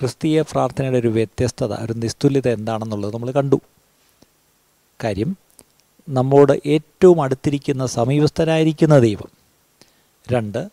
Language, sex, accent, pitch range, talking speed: Malayalam, male, native, 115-145 Hz, 90 wpm